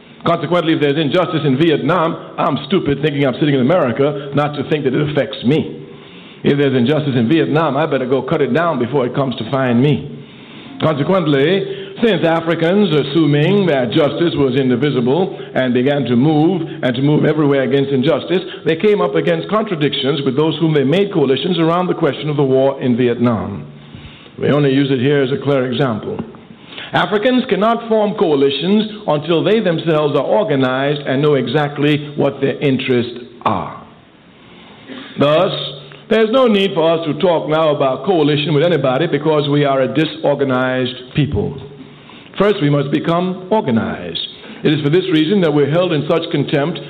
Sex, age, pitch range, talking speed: male, 60-79, 135-170 Hz, 175 wpm